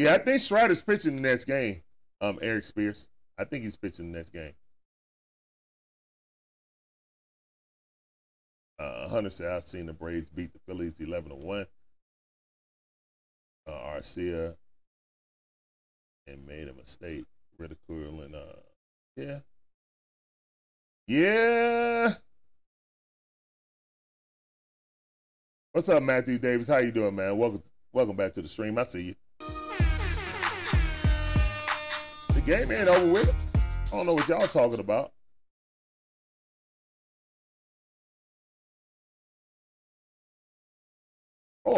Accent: American